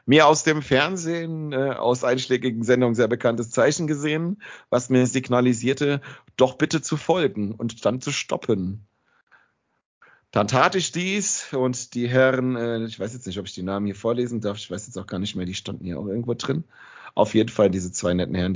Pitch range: 110-140 Hz